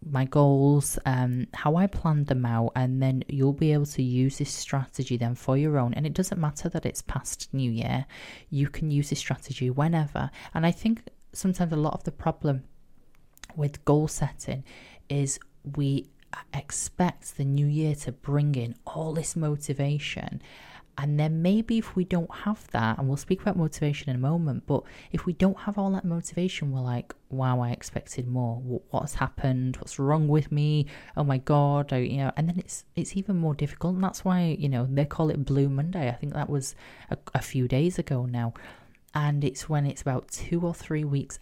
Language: English